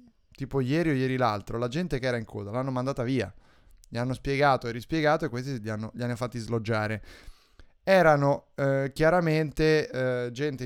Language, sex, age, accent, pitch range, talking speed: Italian, male, 20-39, native, 115-145 Hz, 180 wpm